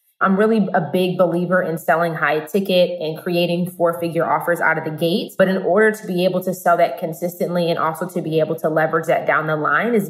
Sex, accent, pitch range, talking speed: female, American, 165-215 Hz, 230 wpm